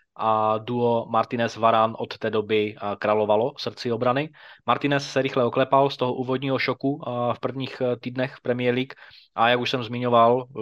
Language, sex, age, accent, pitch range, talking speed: Czech, male, 20-39, native, 110-125 Hz, 160 wpm